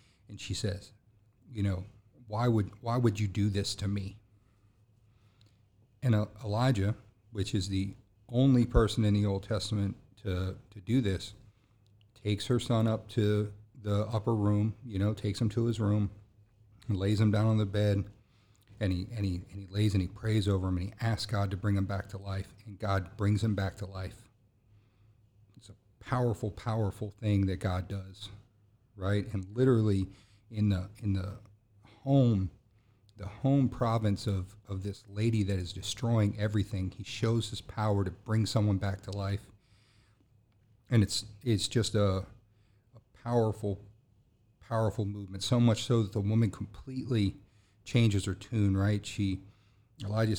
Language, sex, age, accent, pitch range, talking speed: English, male, 40-59, American, 100-110 Hz, 165 wpm